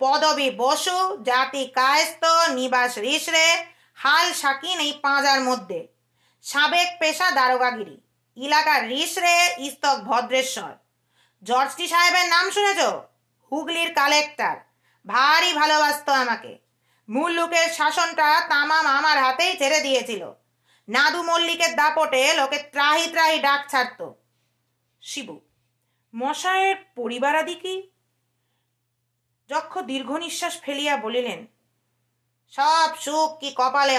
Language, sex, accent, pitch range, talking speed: Bengali, female, native, 255-330 Hz, 65 wpm